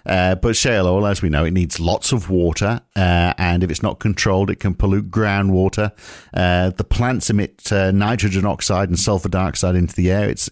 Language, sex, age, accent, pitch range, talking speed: English, male, 50-69, British, 85-110 Hz, 205 wpm